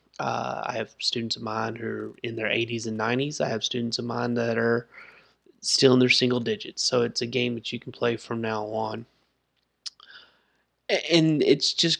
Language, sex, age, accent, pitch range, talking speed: English, male, 20-39, American, 120-135 Hz, 195 wpm